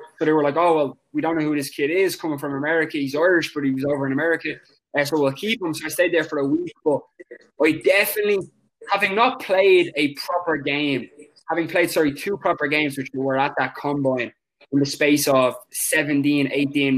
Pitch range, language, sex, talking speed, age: 135-170 Hz, English, male, 225 wpm, 20-39